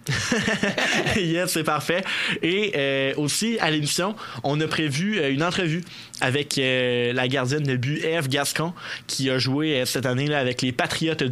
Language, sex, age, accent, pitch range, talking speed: French, male, 20-39, Canadian, 125-155 Hz, 170 wpm